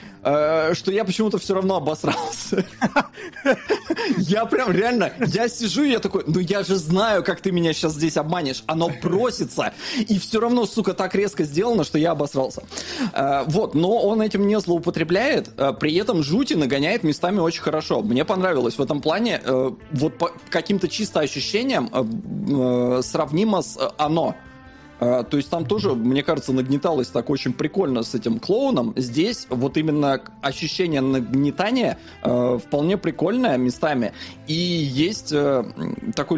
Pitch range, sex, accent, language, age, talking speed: 140-195 Hz, male, native, Russian, 20-39, 145 wpm